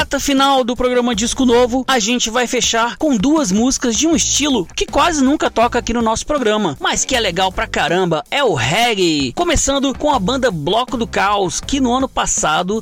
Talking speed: 200 wpm